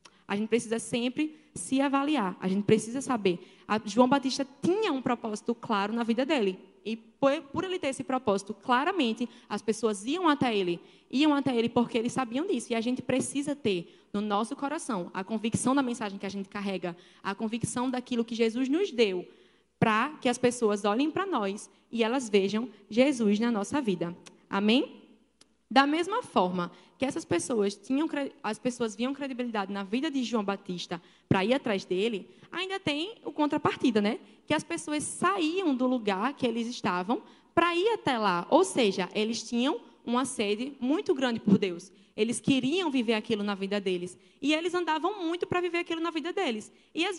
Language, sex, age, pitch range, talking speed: Portuguese, female, 20-39, 205-280 Hz, 180 wpm